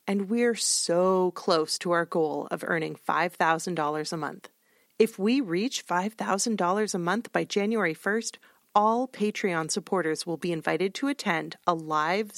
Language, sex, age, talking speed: English, female, 30-49, 150 wpm